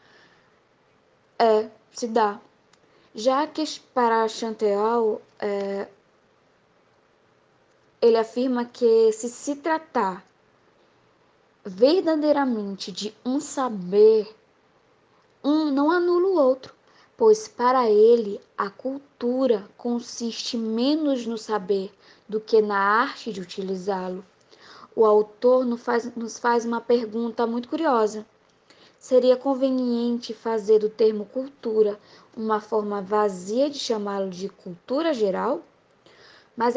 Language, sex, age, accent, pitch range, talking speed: Portuguese, female, 20-39, Brazilian, 210-255 Hz, 100 wpm